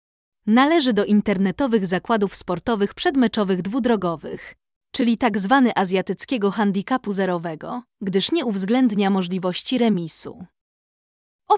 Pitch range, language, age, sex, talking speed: 195-255 Hz, Polish, 20-39, female, 95 wpm